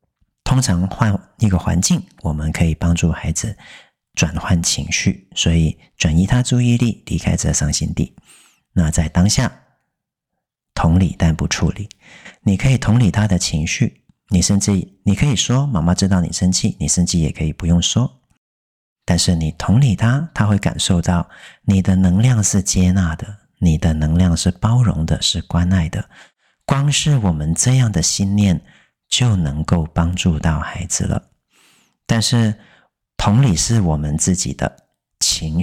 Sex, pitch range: male, 80-105 Hz